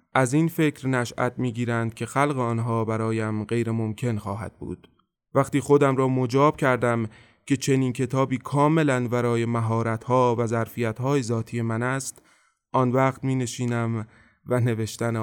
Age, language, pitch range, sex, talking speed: 20-39, Persian, 115-130 Hz, male, 135 wpm